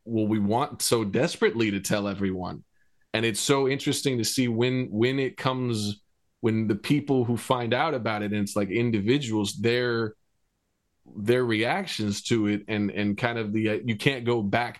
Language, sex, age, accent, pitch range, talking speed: English, male, 20-39, American, 105-125 Hz, 185 wpm